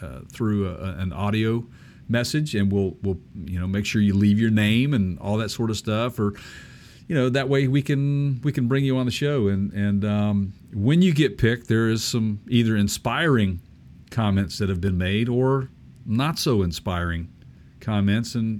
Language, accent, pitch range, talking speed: English, American, 100-120 Hz, 195 wpm